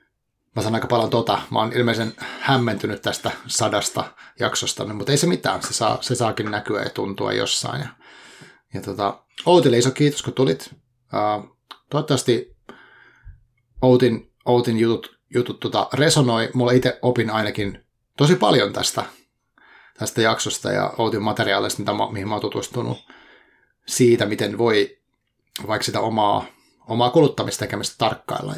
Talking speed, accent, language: 140 wpm, native, Finnish